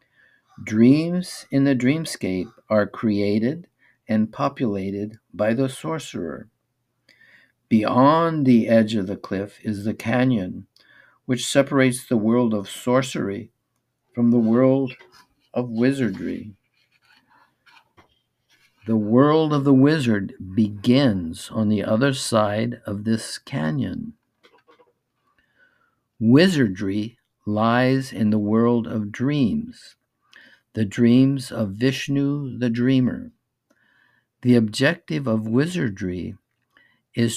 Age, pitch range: 50-69, 110-135 Hz